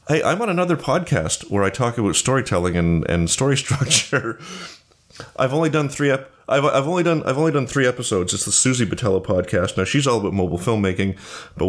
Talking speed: 205 wpm